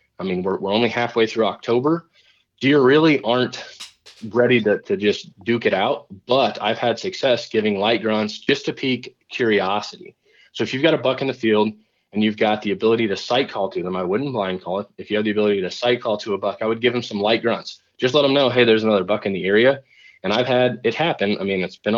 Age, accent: 20-39, American